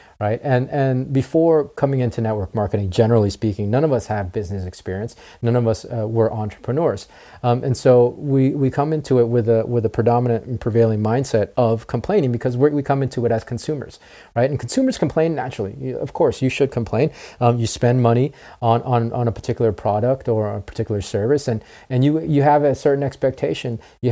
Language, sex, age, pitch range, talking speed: English, male, 30-49, 110-135 Hz, 200 wpm